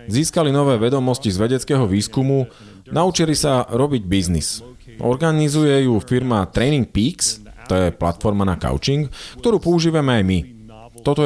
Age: 30-49